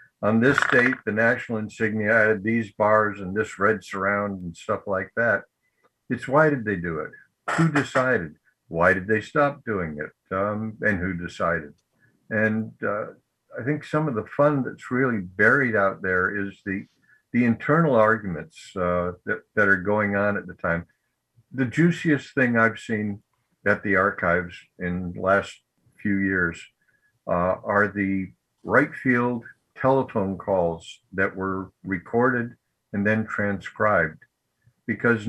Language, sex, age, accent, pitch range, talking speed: English, male, 60-79, American, 100-130 Hz, 150 wpm